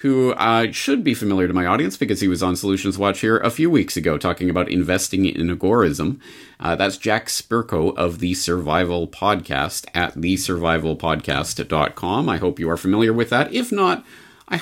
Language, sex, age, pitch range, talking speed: English, male, 40-59, 90-135 Hz, 180 wpm